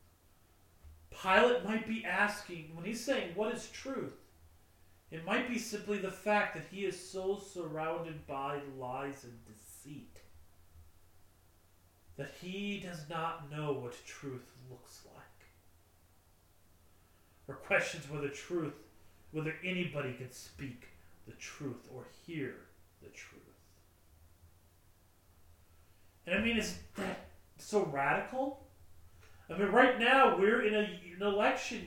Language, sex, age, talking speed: English, male, 30-49, 120 wpm